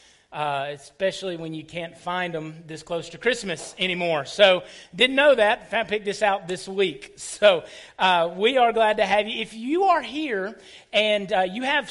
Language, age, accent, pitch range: English, 40-59, American, 165-225 Hz